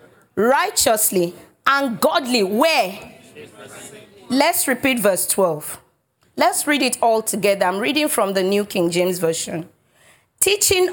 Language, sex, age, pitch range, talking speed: English, female, 30-49, 225-315 Hz, 120 wpm